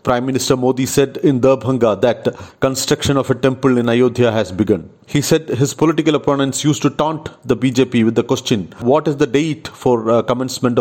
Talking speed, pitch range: 190 wpm, 110-130 Hz